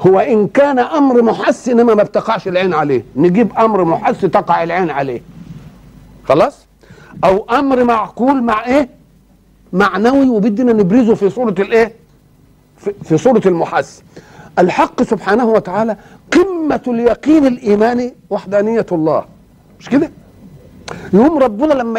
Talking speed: 125 wpm